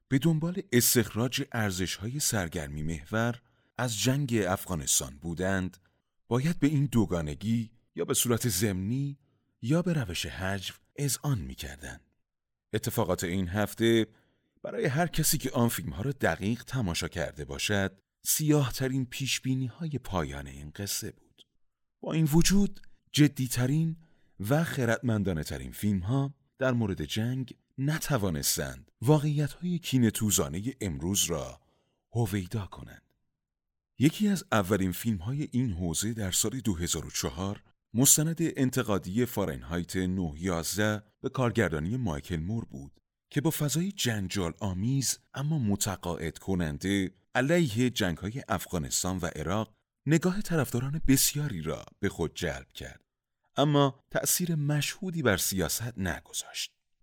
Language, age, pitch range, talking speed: Persian, 30-49, 95-135 Hz, 120 wpm